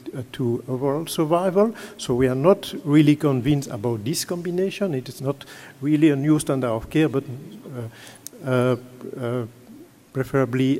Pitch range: 130-165 Hz